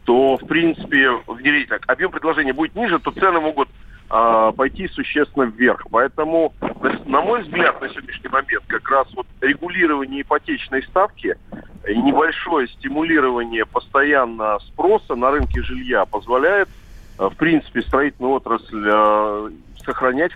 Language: Russian